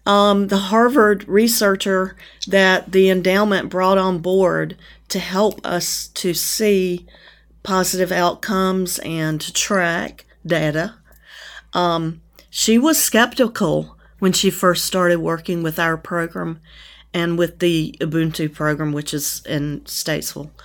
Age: 40-59